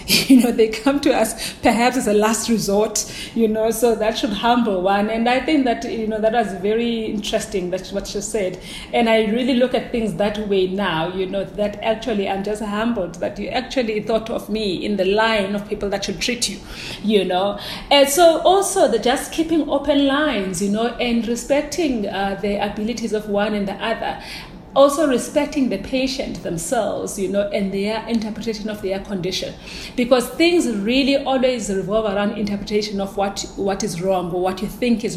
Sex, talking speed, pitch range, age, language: female, 195 wpm, 200-240 Hz, 40-59, English